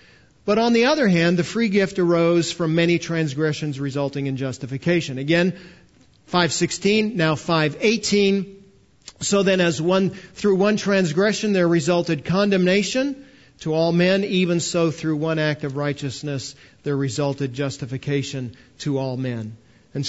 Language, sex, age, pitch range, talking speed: English, male, 40-59, 150-205 Hz, 135 wpm